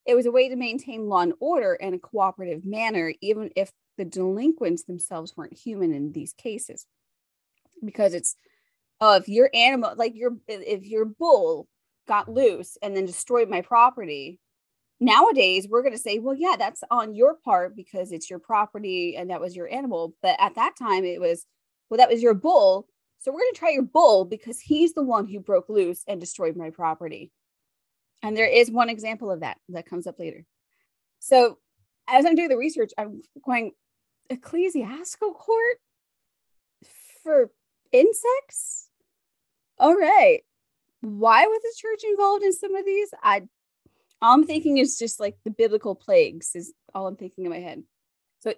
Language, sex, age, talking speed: English, female, 20-39, 175 wpm